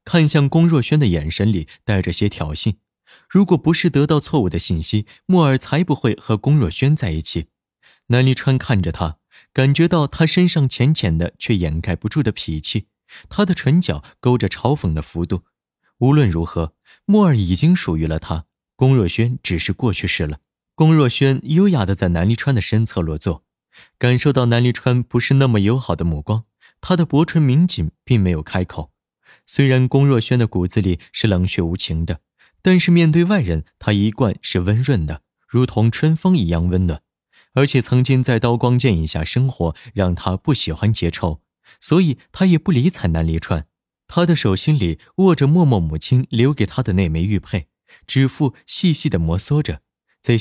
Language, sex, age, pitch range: Chinese, male, 20-39, 90-140 Hz